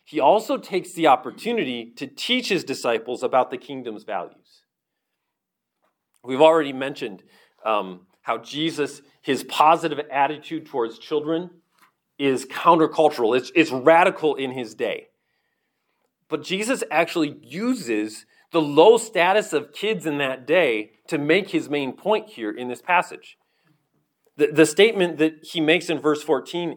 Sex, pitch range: male, 150-220 Hz